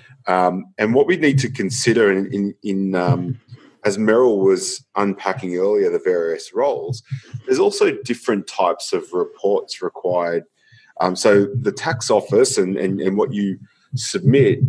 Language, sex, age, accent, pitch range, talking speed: English, male, 30-49, Australian, 95-140 Hz, 150 wpm